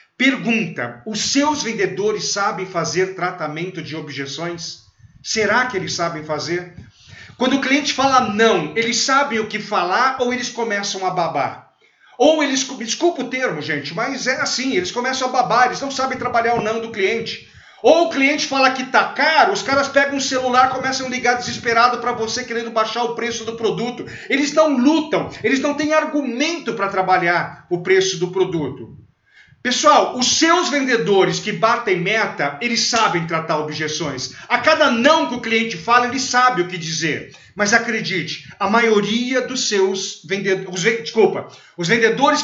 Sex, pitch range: male, 180-255 Hz